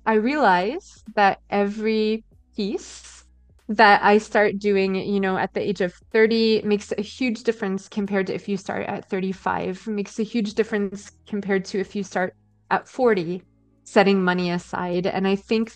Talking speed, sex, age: 170 wpm, female, 20-39